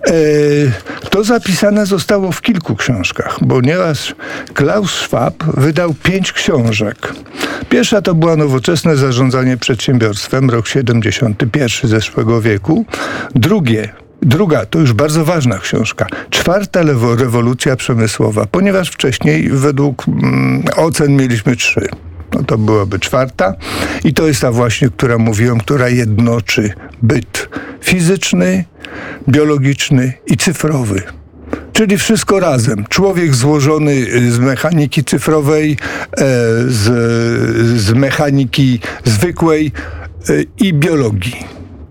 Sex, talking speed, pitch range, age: male, 100 wpm, 115-160 Hz, 50-69